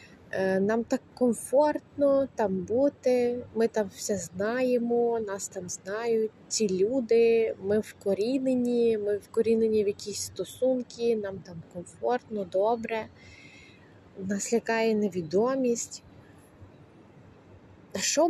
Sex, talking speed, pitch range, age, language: female, 100 wpm, 195-240 Hz, 20-39, Ukrainian